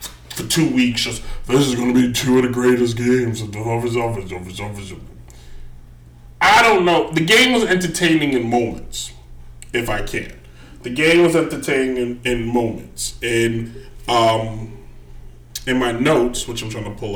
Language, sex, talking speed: English, male, 155 wpm